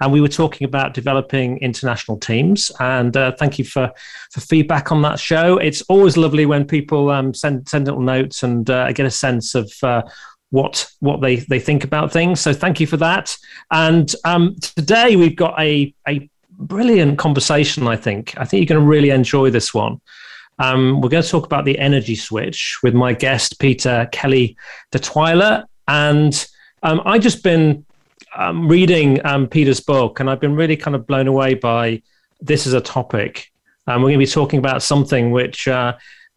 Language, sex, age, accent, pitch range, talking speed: English, male, 30-49, British, 130-160 Hz, 195 wpm